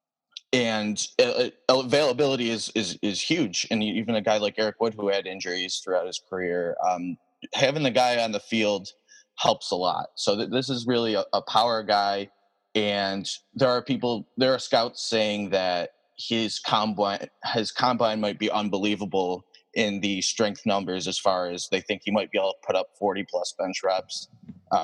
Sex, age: male, 20-39